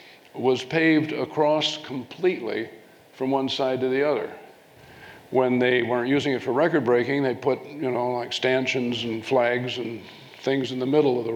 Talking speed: 175 wpm